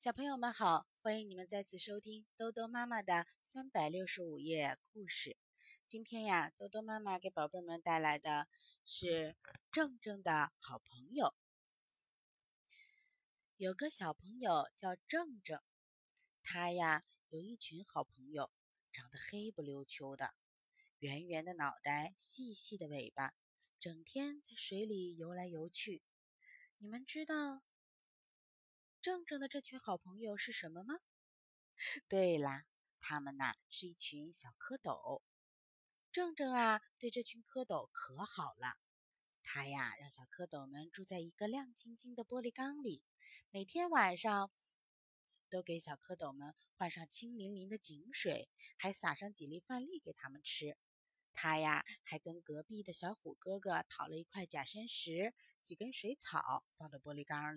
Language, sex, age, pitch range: Chinese, female, 20-39, 160-240 Hz